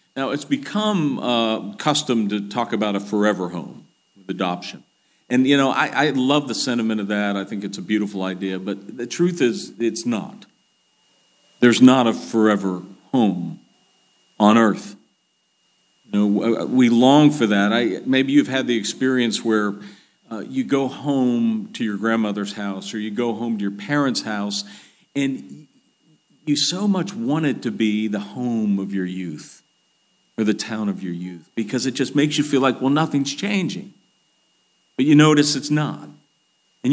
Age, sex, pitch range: 50-69, male, 105-150 Hz